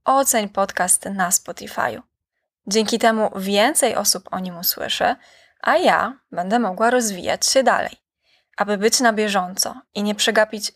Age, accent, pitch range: 20-39, native, 195-235 Hz